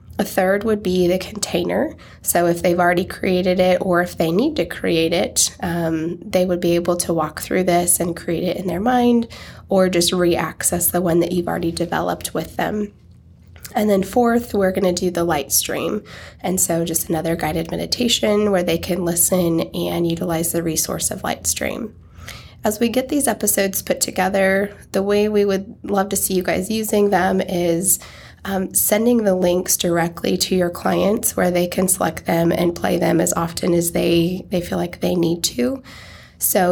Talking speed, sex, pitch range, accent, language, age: 195 wpm, female, 170-195 Hz, American, English, 20-39